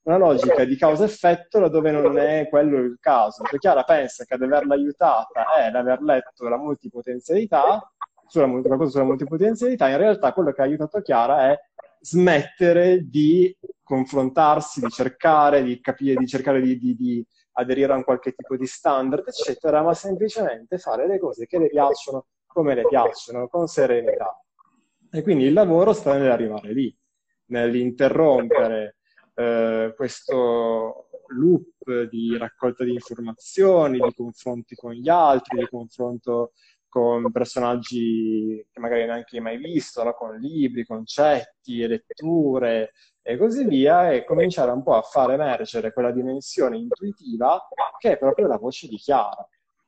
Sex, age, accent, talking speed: male, 20-39, native, 145 wpm